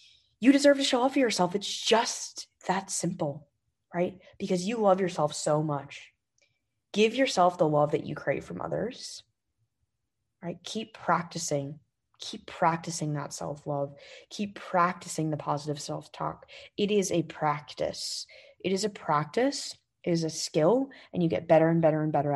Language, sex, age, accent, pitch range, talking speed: English, female, 20-39, American, 145-175 Hz, 160 wpm